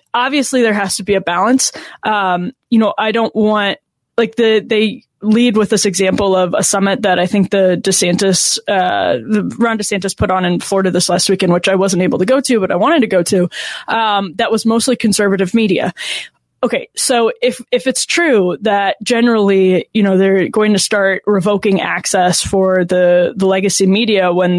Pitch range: 185-220 Hz